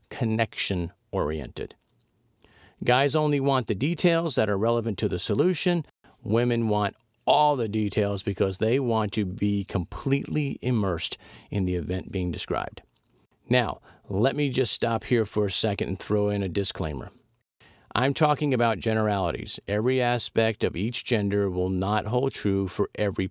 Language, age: English, 50-69